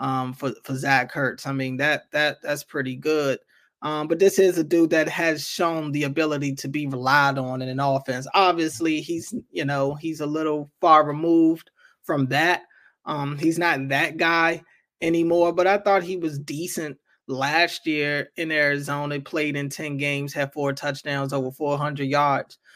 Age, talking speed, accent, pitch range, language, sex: 20-39, 180 wpm, American, 145-175 Hz, English, male